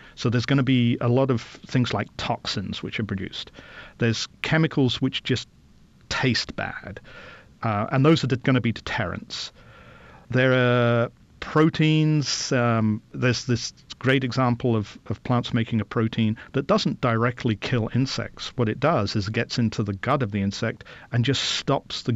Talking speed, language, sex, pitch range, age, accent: 165 wpm, English, male, 110-135 Hz, 40-59, British